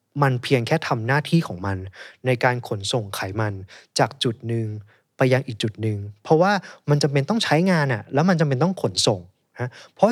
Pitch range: 110-155 Hz